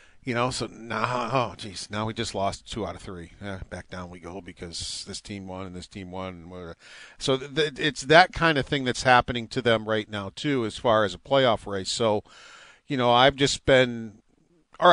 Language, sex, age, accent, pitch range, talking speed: English, male, 40-59, American, 110-140 Hz, 230 wpm